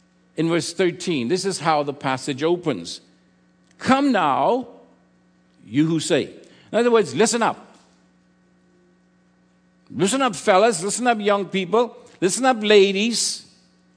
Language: English